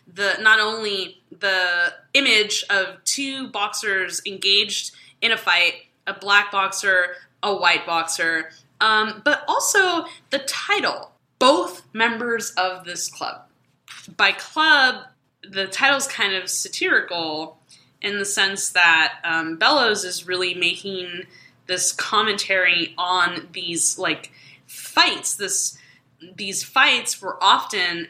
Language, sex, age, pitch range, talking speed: English, female, 10-29, 180-230 Hz, 115 wpm